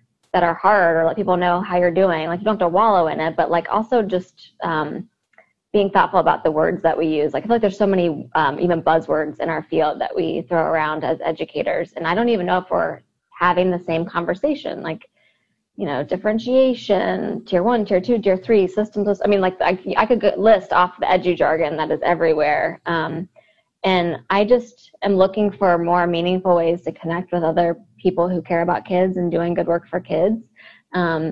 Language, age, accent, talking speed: English, 20-39, American, 215 wpm